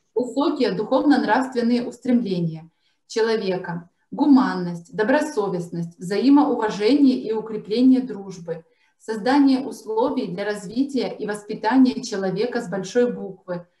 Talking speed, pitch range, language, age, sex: 85 wpm, 200-250 Hz, Russian, 20-39, female